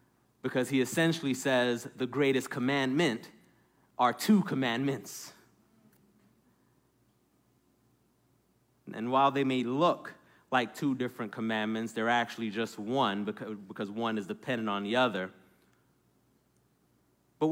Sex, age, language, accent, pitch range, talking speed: male, 30-49, English, American, 120-180 Hz, 105 wpm